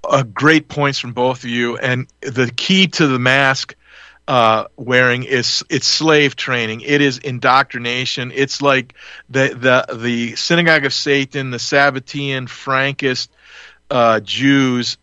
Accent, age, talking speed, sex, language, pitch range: American, 40-59, 140 wpm, male, English, 120-135 Hz